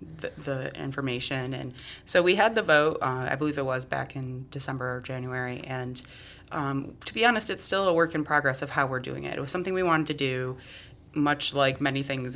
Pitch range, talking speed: 130-150 Hz, 225 wpm